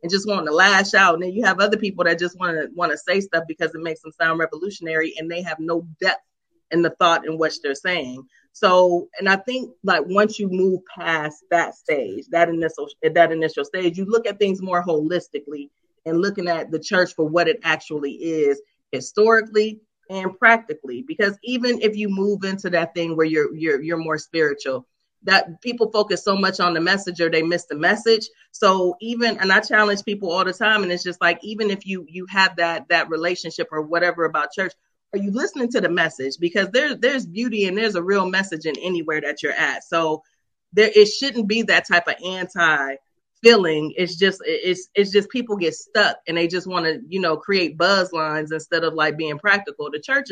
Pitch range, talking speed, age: 165-205 Hz, 215 wpm, 30-49